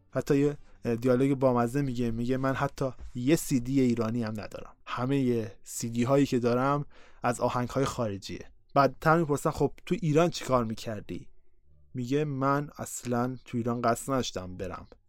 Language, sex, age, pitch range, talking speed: Persian, male, 20-39, 115-145 Hz, 160 wpm